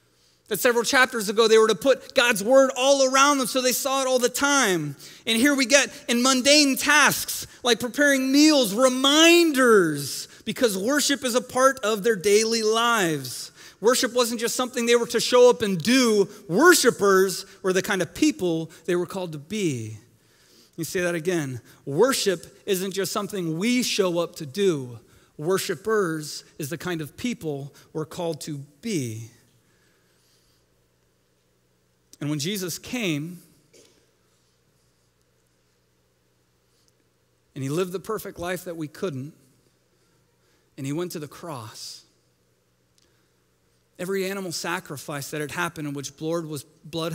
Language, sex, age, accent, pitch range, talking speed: English, male, 30-49, American, 135-225 Hz, 145 wpm